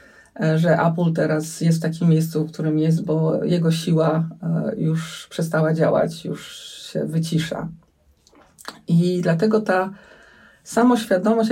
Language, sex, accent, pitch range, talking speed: Polish, female, native, 165-210 Hz, 120 wpm